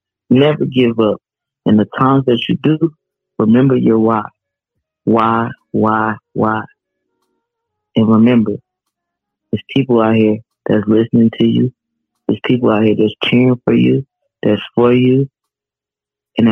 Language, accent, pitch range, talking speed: English, American, 105-125 Hz, 135 wpm